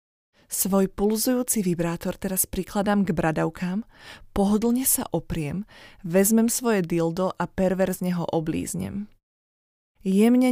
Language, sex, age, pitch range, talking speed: Slovak, female, 20-39, 175-215 Hz, 105 wpm